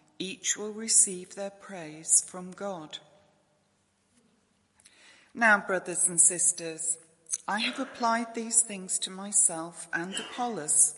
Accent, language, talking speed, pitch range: British, English, 110 wpm, 160-225 Hz